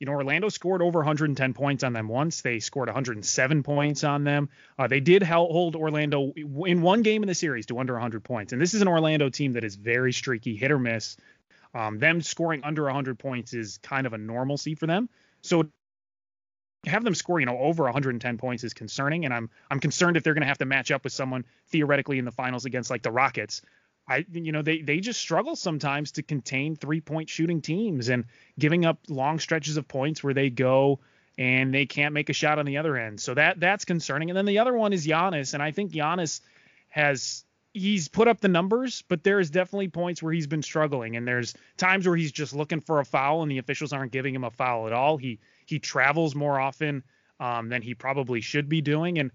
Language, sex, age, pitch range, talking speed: English, male, 20-39, 130-165 Hz, 225 wpm